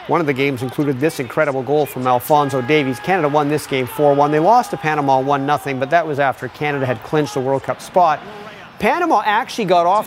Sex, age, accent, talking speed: male, 40-59, American, 225 wpm